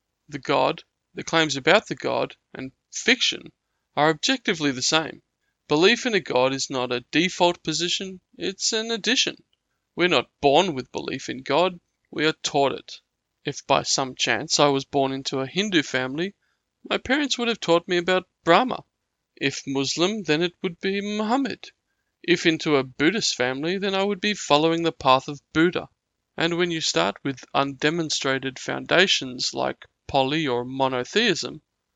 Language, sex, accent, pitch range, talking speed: English, male, Australian, 135-180 Hz, 165 wpm